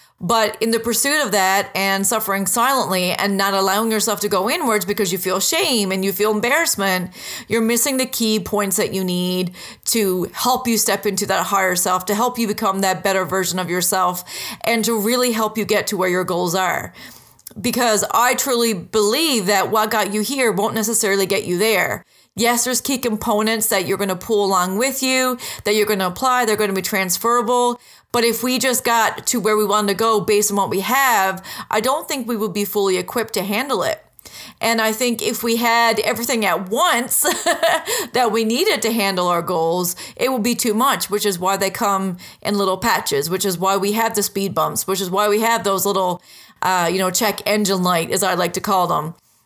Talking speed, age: 215 wpm, 30-49